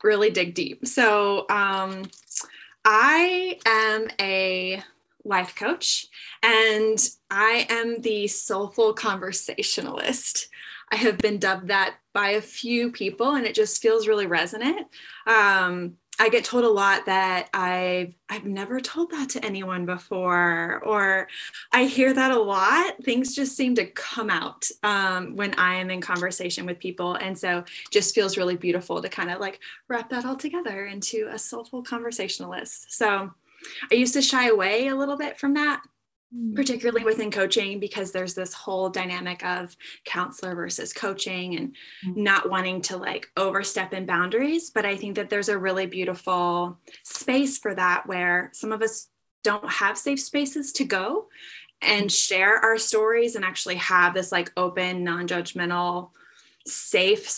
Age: 10-29